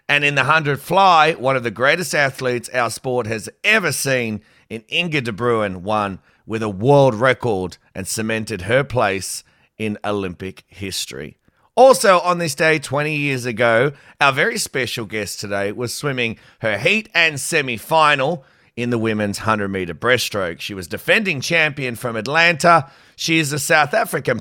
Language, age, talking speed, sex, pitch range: English, 30-49, 160 wpm, male, 105-155 Hz